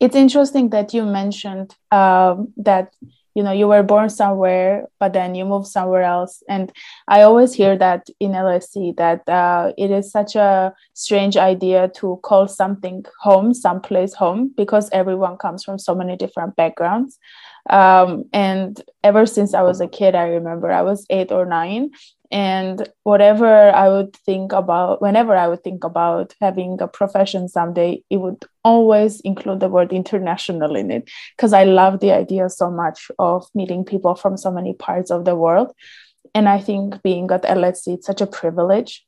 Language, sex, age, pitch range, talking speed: English, female, 20-39, 180-205 Hz, 175 wpm